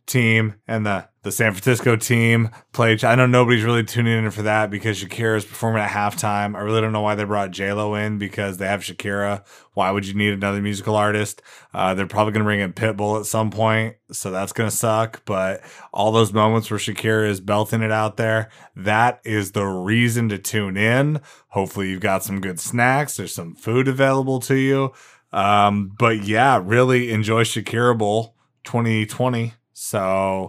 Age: 20-39